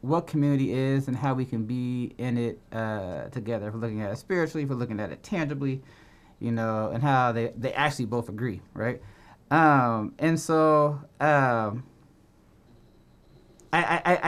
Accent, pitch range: American, 125-155 Hz